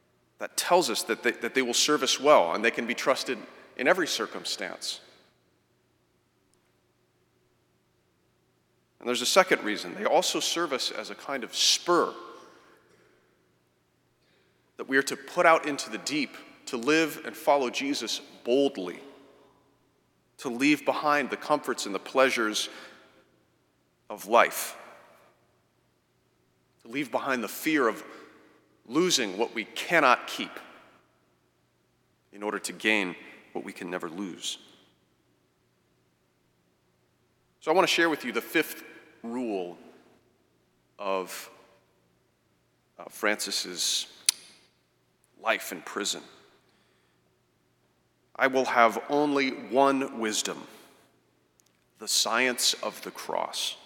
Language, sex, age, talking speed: English, male, 40-59, 115 wpm